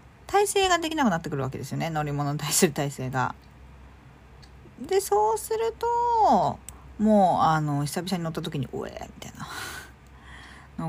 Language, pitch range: Japanese, 140-220 Hz